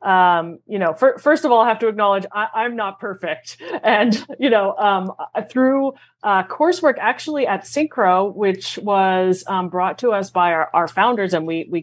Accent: American